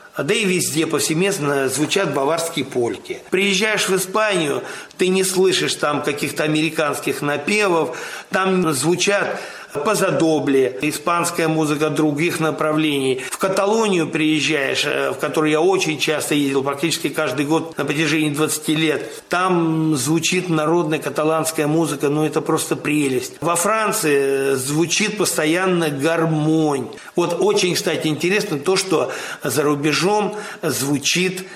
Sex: male